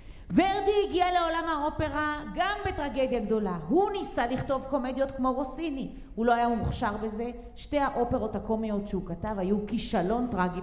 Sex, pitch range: female, 155-255 Hz